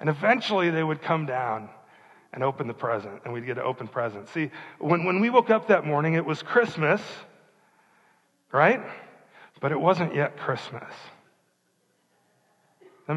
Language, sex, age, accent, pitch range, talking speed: English, male, 40-59, American, 145-195 Hz, 160 wpm